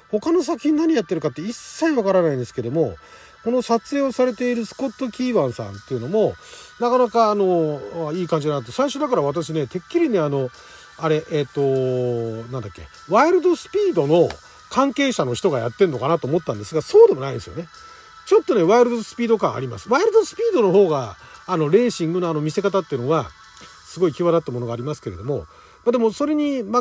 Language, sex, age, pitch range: Japanese, male, 40-59, 150-245 Hz